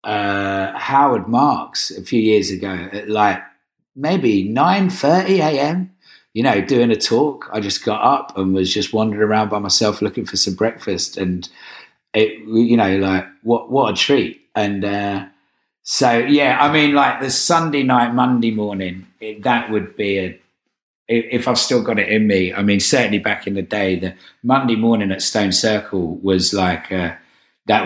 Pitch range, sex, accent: 100-125 Hz, male, British